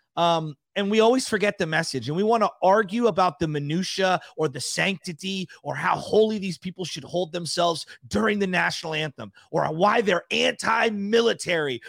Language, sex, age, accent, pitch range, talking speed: English, male, 30-49, American, 160-220 Hz, 170 wpm